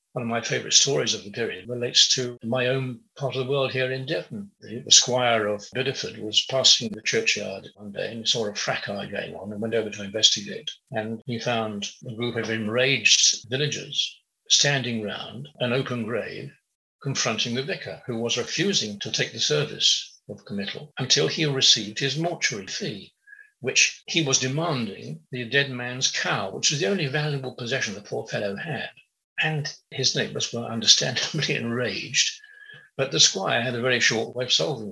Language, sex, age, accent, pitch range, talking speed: English, male, 60-79, British, 120-155 Hz, 180 wpm